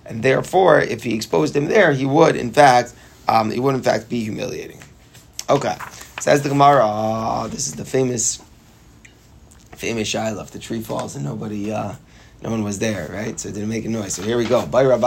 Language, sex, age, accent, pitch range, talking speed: English, male, 30-49, American, 110-130 Hz, 205 wpm